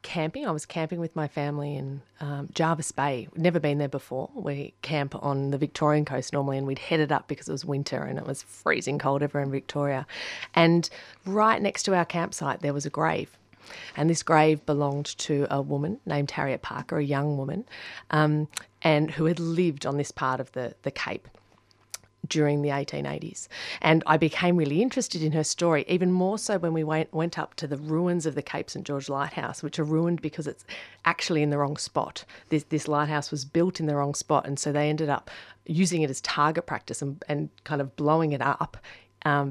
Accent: Australian